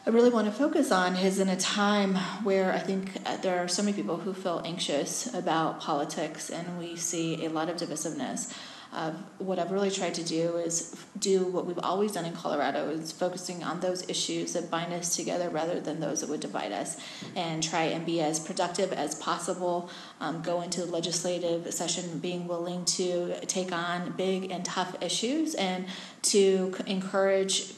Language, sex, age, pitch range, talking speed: English, female, 30-49, 175-195 Hz, 190 wpm